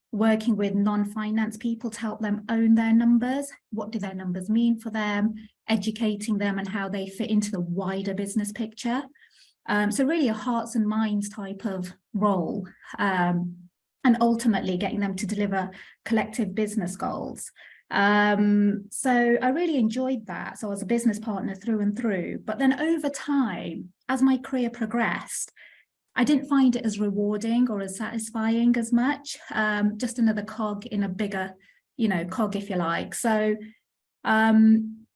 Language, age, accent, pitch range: English, 30-49, British, 205-235 Hz